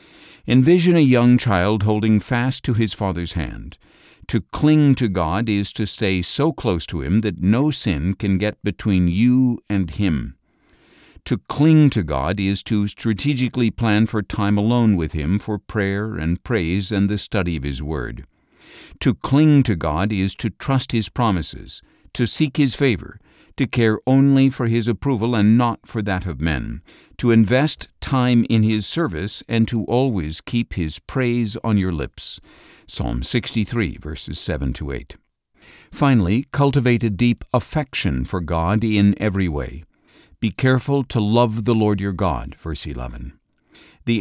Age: 60-79